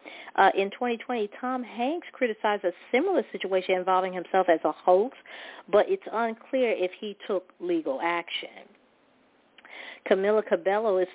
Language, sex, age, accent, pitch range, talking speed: English, female, 40-59, American, 180-210 Hz, 135 wpm